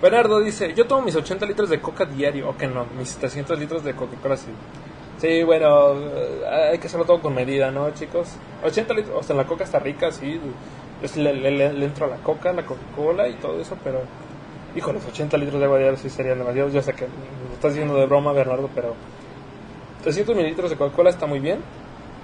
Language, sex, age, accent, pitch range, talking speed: Spanish, male, 20-39, Mexican, 135-165 Hz, 215 wpm